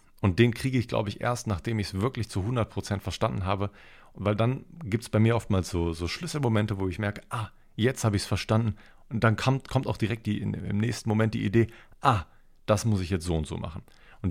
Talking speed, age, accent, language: 245 wpm, 40-59, German, German